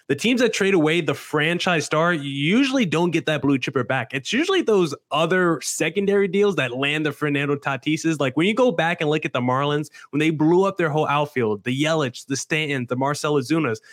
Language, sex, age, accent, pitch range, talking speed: English, male, 20-39, American, 135-185 Hz, 215 wpm